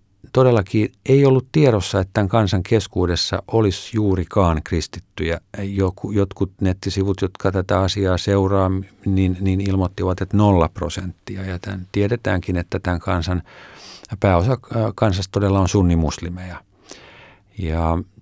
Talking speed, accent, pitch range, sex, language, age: 110 wpm, native, 95-110 Hz, male, Finnish, 50-69